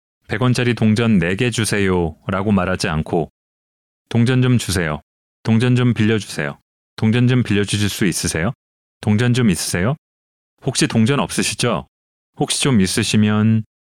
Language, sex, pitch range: Korean, male, 90-125 Hz